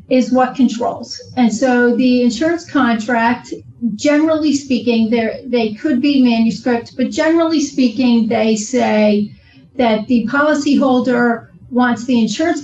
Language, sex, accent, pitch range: English, female, American, 230-280 Hz